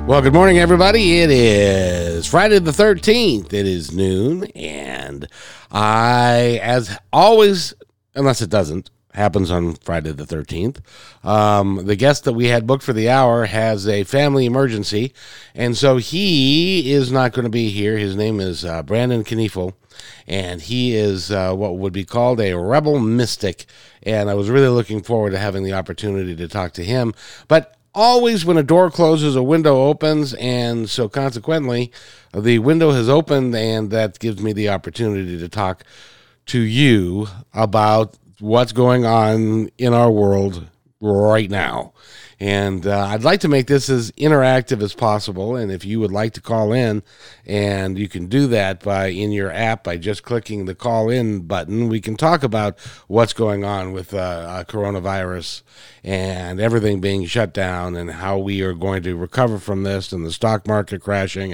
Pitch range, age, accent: 95-130 Hz, 50-69, American